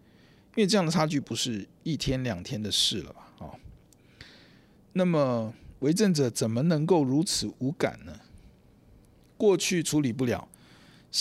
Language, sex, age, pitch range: Chinese, male, 50-69, 105-155 Hz